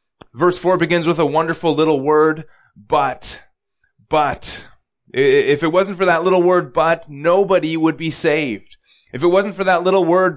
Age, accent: 20-39, American